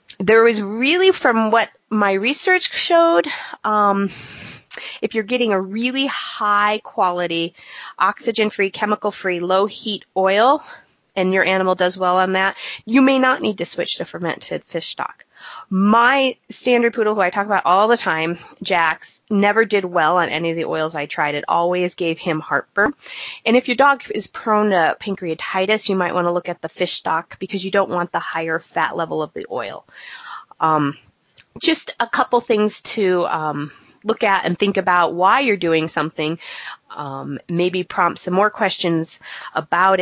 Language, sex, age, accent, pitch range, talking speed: English, female, 30-49, American, 170-220 Hz, 170 wpm